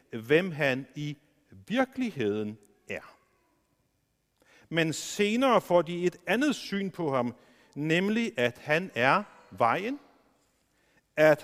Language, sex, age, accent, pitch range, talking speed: Danish, male, 50-69, native, 140-195 Hz, 105 wpm